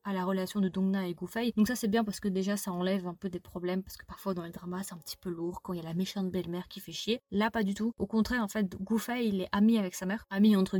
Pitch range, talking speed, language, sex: 185-220 Hz, 320 wpm, French, female